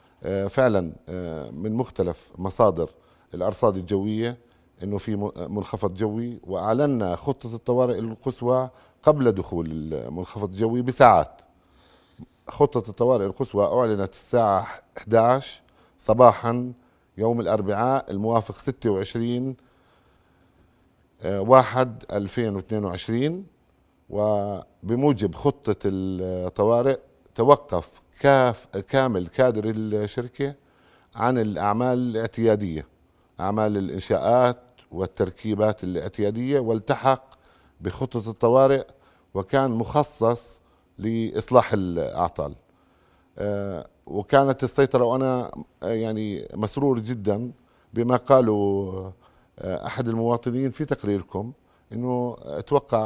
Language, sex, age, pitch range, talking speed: Arabic, male, 50-69, 100-125 Hz, 75 wpm